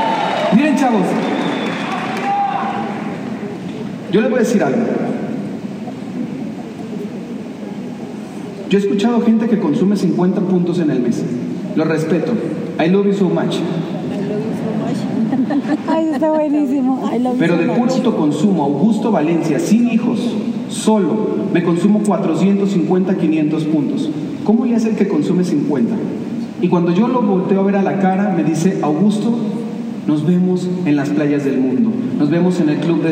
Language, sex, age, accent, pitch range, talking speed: Spanish, male, 40-59, Mexican, 180-230 Hz, 140 wpm